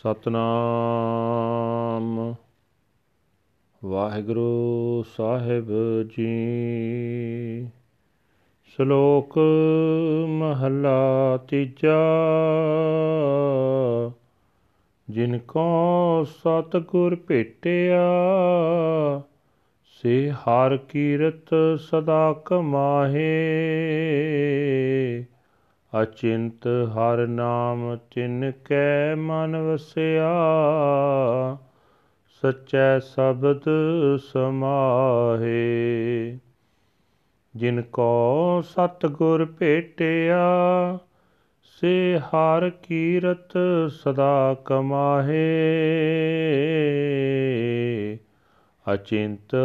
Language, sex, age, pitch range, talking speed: Punjabi, male, 40-59, 120-160 Hz, 45 wpm